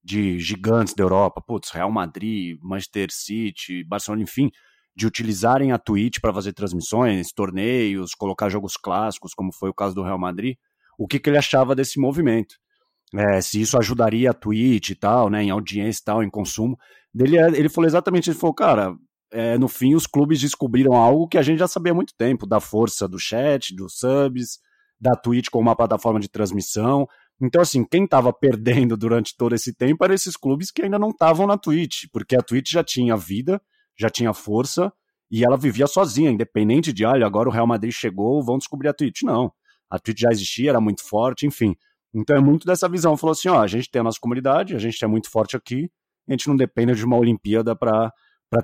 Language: Portuguese